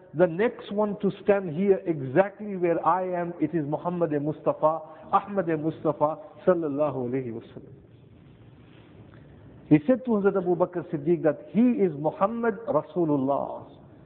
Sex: male